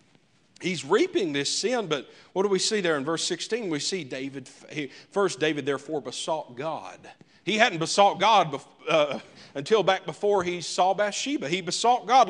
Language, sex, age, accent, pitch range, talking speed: English, male, 40-59, American, 180-240 Hz, 170 wpm